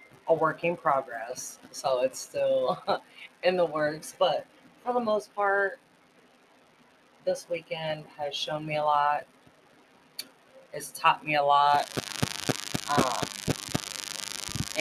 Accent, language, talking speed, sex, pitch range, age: American, English, 115 wpm, female, 145-185 Hz, 30-49